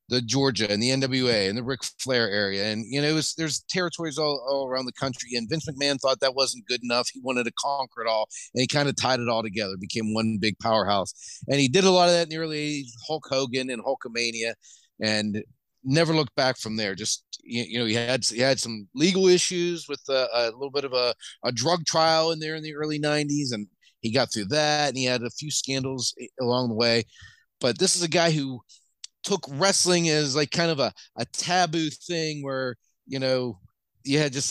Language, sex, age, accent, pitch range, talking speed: English, male, 40-59, American, 120-160 Hz, 230 wpm